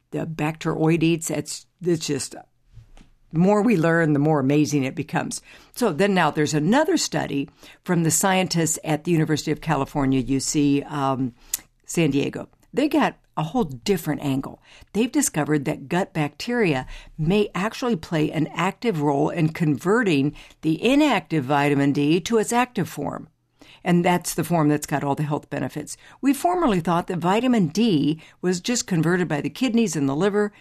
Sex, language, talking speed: female, English, 165 wpm